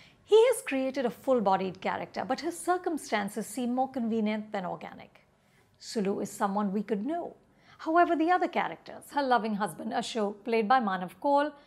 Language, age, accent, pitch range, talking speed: English, 50-69, Indian, 210-320 Hz, 170 wpm